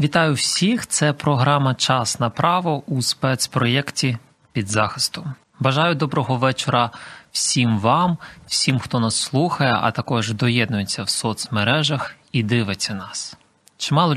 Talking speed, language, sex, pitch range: 125 wpm, Ukrainian, male, 125-155 Hz